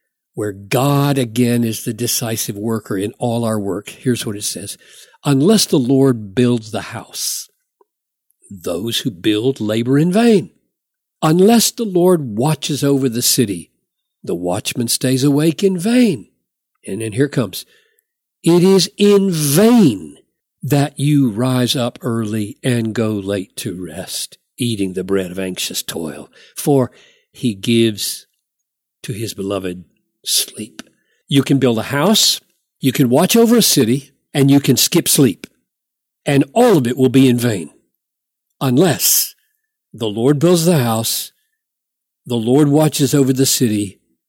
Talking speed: 145 wpm